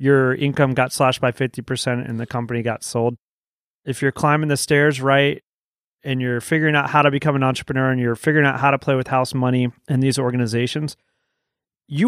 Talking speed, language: 200 wpm, English